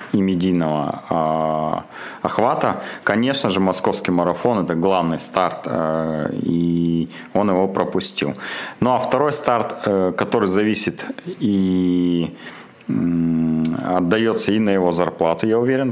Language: Russian